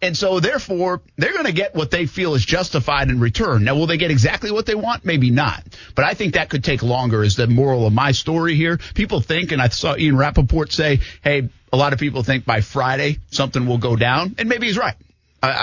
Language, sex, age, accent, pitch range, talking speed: English, male, 50-69, American, 120-185 Hz, 240 wpm